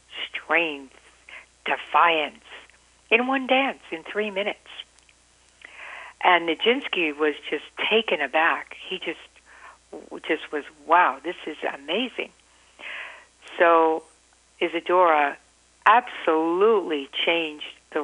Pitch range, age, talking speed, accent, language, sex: 145-175 Hz, 60-79, 90 wpm, American, English, female